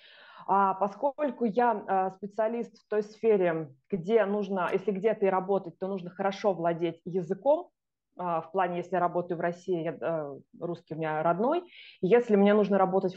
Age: 20-39